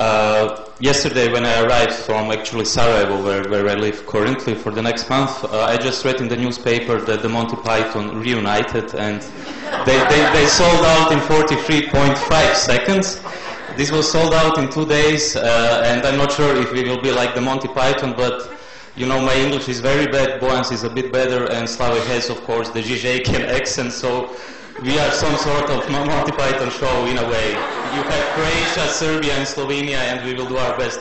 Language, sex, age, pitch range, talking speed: English, male, 20-39, 120-145 Hz, 195 wpm